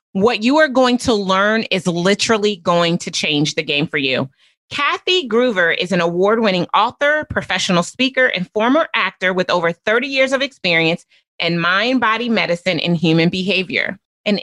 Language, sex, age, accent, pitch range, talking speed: English, female, 30-49, American, 180-240 Hz, 165 wpm